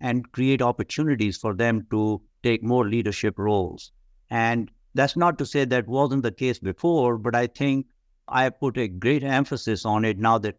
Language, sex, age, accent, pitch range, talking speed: English, male, 60-79, Indian, 105-130 Hz, 180 wpm